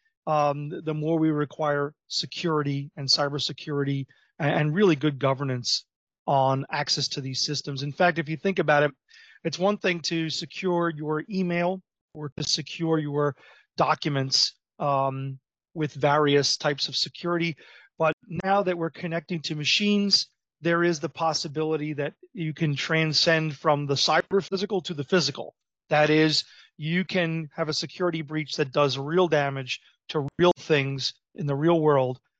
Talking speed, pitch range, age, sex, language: 150 wpm, 145-170 Hz, 30-49, male, English